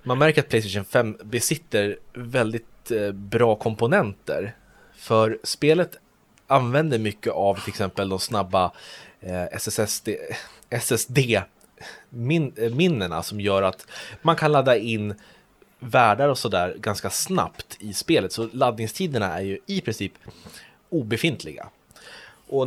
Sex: male